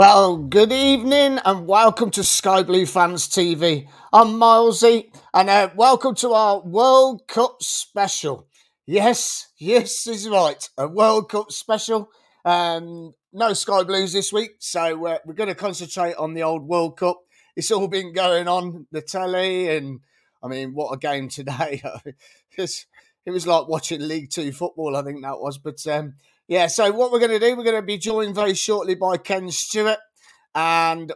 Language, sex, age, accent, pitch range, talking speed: English, male, 30-49, British, 165-210 Hz, 175 wpm